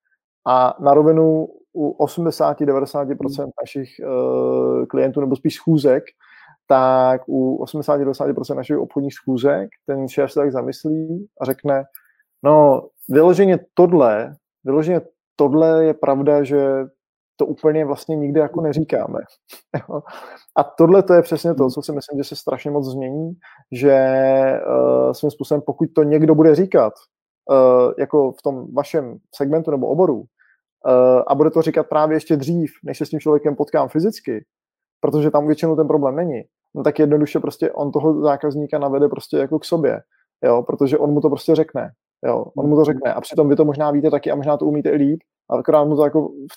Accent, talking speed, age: native, 170 wpm, 20-39